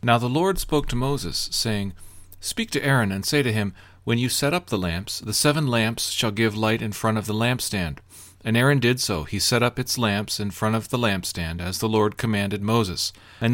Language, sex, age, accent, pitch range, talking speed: English, male, 40-59, American, 100-130 Hz, 225 wpm